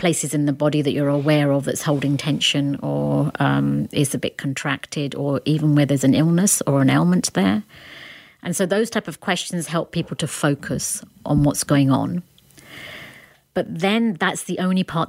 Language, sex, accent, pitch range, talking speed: English, female, British, 140-170 Hz, 185 wpm